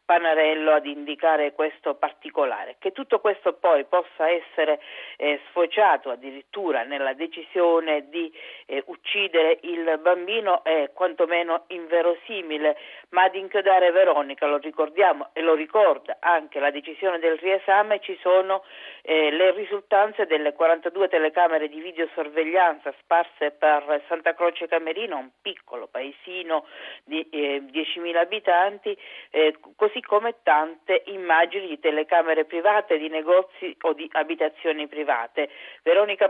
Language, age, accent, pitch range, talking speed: Italian, 50-69, native, 155-185 Hz, 120 wpm